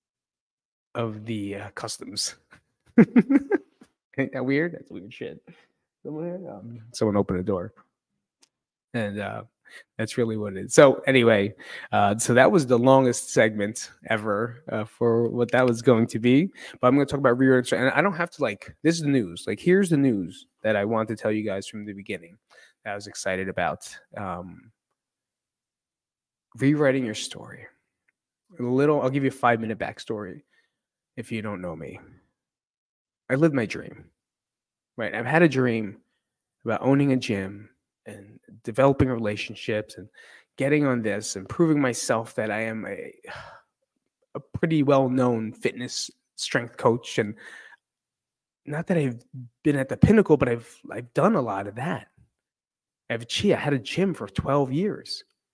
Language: English